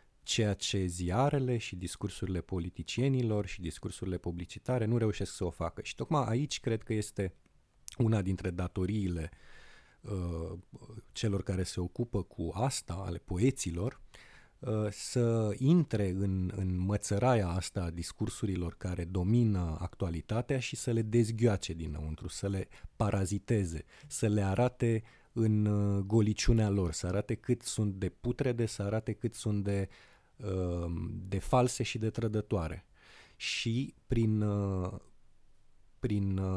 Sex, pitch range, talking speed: male, 95-120 Hz, 125 wpm